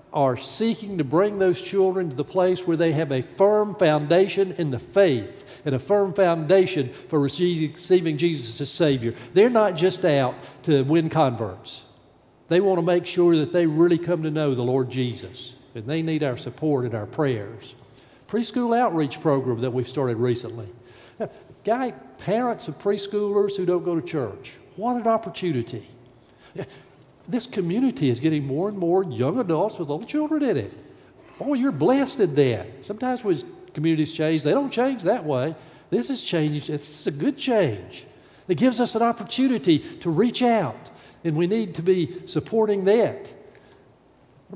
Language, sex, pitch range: English, male, 140-205 Hz